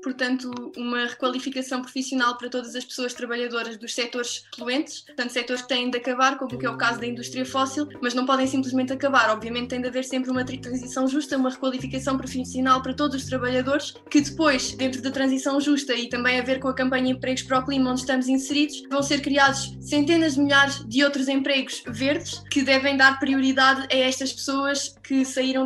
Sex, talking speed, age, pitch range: female, 195 wpm, 20-39, 255-275 Hz